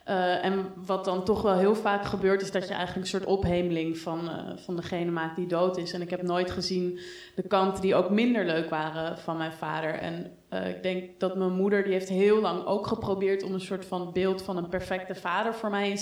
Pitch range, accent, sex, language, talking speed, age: 180-200 Hz, Dutch, female, Dutch, 240 wpm, 20-39